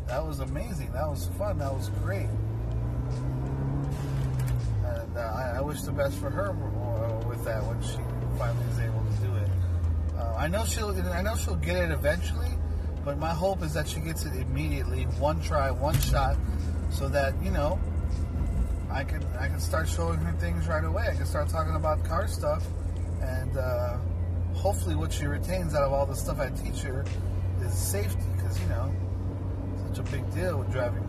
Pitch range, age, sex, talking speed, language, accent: 80-95 Hz, 30-49, male, 185 wpm, English, American